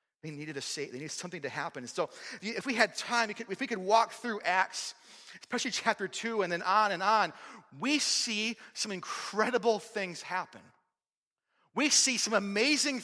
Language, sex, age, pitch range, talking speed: English, male, 30-49, 205-275 Hz, 180 wpm